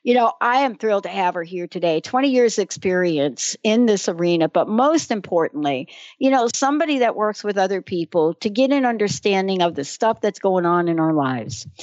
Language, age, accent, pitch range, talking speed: English, 60-79, American, 175-245 Hz, 205 wpm